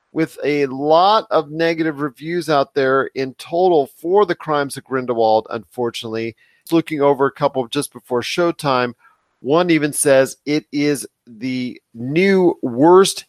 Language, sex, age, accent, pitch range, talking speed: English, male, 40-59, American, 125-155 Hz, 140 wpm